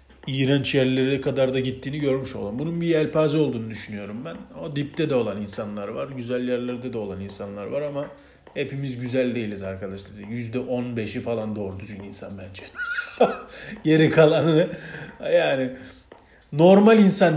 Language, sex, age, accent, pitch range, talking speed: Turkish, male, 40-59, native, 110-155 Hz, 140 wpm